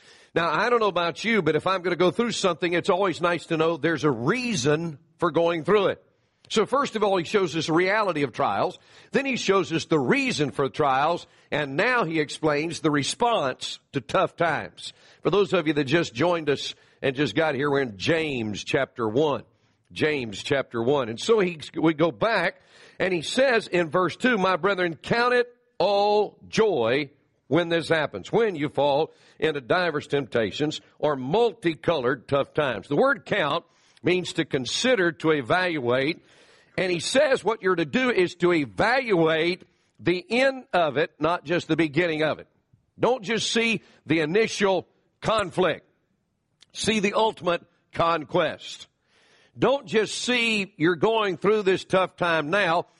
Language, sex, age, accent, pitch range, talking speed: English, male, 50-69, American, 160-210 Hz, 175 wpm